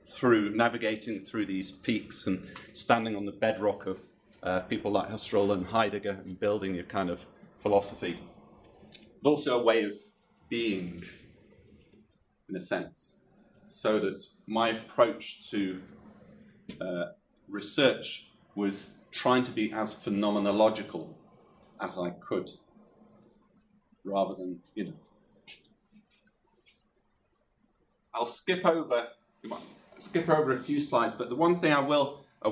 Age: 30-49